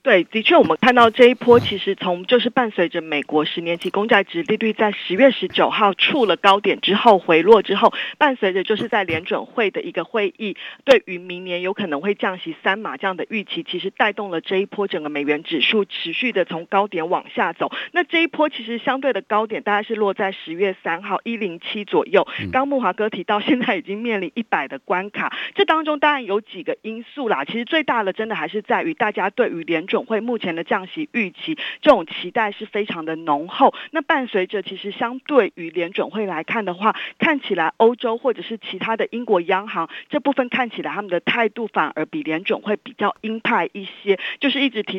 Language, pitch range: Chinese, 185-245 Hz